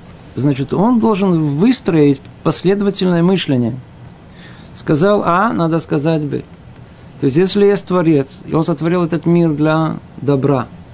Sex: male